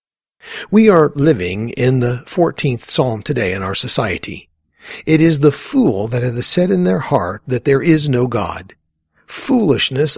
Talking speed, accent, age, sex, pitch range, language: 160 wpm, American, 50-69, male, 115-160 Hz, English